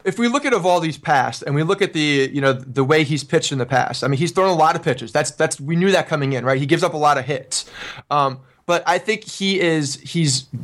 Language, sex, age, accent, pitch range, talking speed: English, male, 30-49, American, 140-185 Hz, 295 wpm